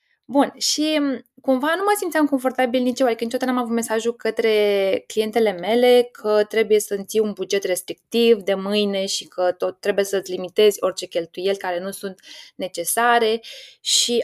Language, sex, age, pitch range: Romanian, female, 20-39, 195-250 Hz